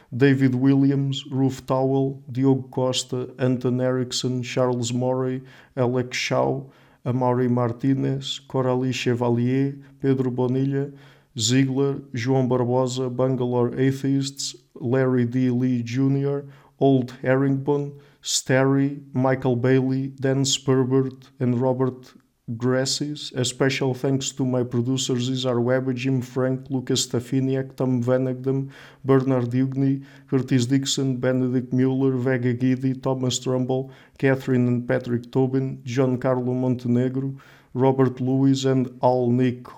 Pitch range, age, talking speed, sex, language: 125-135 Hz, 50-69, 110 wpm, male, English